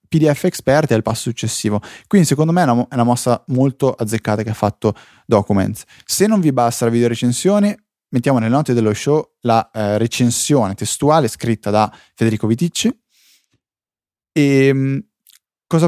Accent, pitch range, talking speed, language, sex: native, 115-140 Hz, 150 wpm, Italian, male